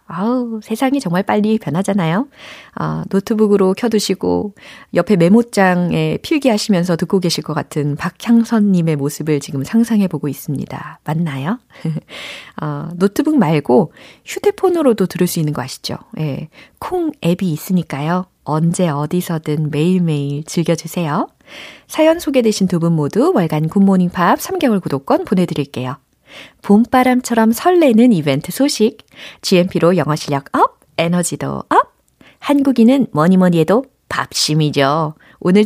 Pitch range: 155-245 Hz